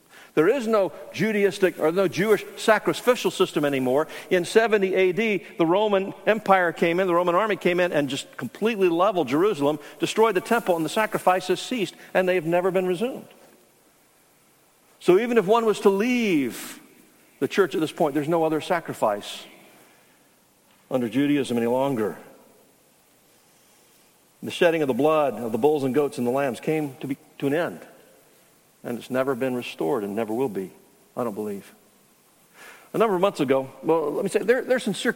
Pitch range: 155-205 Hz